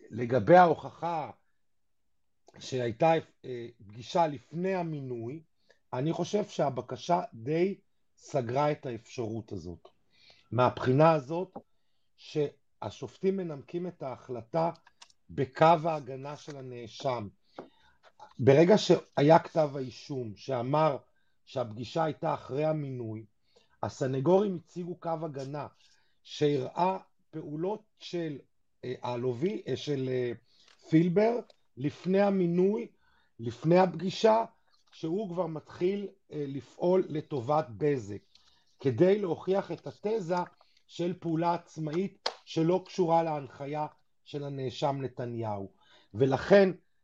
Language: Hebrew